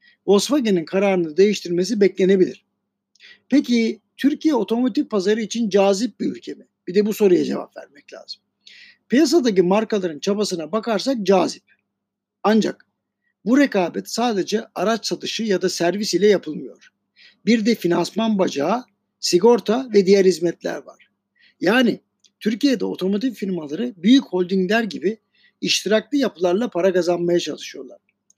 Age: 60-79